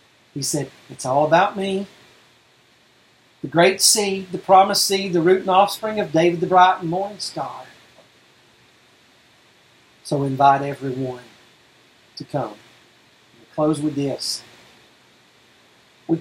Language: English